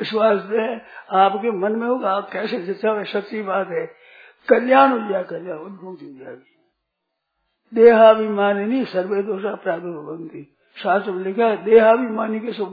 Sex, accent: male, native